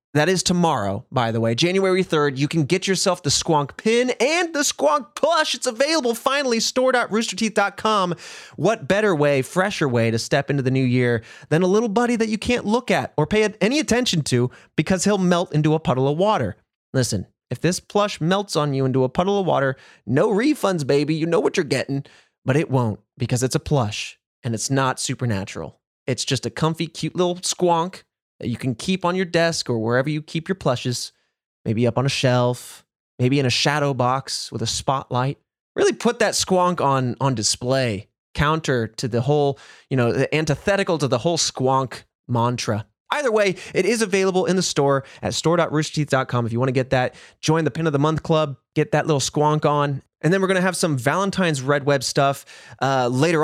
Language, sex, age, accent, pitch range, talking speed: English, male, 20-39, American, 130-190 Hz, 200 wpm